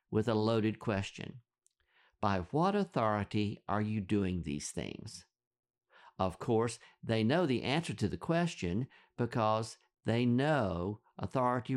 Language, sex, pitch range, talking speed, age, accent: English, male, 105-135 Hz, 125 wpm, 50-69, American